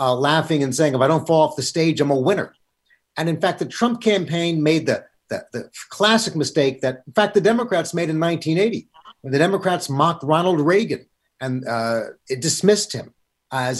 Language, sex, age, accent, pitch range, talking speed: English, male, 50-69, American, 135-180 Hz, 200 wpm